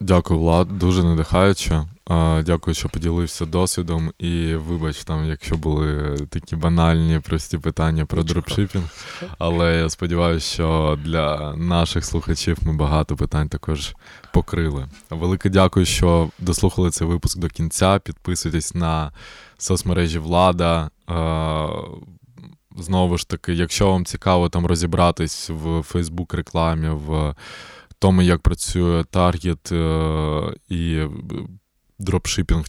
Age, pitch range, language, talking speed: 20-39, 80-90 Hz, Ukrainian, 110 wpm